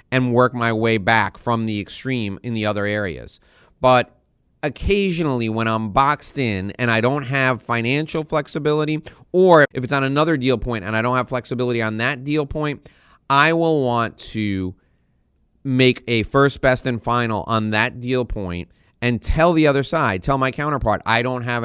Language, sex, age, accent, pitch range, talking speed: English, male, 30-49, American, 105-130 Hz, 180 wpm